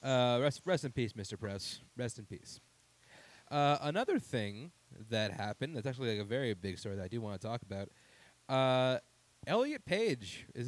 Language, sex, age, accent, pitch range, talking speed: English, male, 20-39, American, 110-135 Hz, 185 wpm